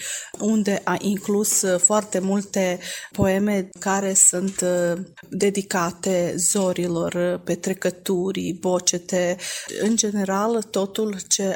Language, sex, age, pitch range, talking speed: Romanian, female, 30-49, 180-195 Hz, 85 wpm